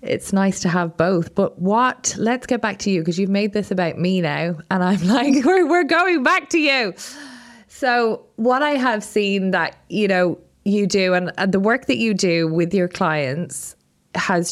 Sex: female